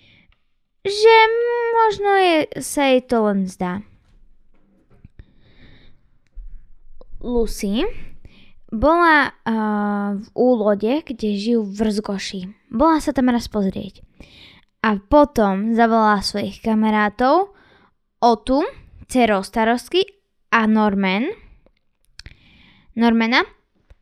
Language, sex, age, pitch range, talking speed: Slovak, female, 10-29, 210-285 Hz, 80 wpm